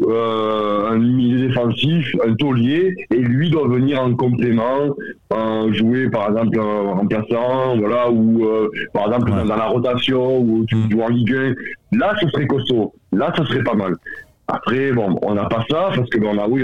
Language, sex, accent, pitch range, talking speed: French, male, French, 105-130 Hz, 200 wpm